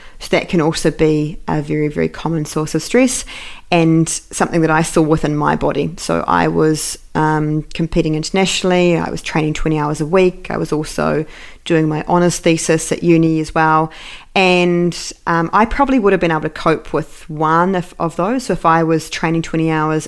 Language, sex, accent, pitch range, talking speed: English, female, Australian, 155-180 Hz, 190 wpm